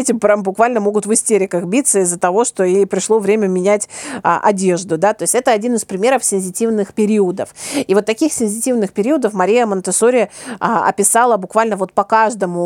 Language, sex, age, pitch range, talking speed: Russian, female, 30-49, 190-230 Hz, 180 wpm